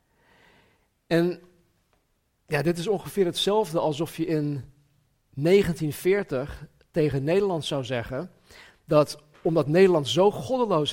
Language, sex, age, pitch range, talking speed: Dutch, male, 50-69, 120-165 Hz, 100 wpm